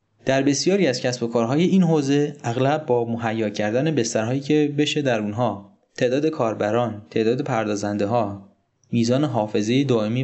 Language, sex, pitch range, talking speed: Persian, male, 110-155 Hz, 145 wpm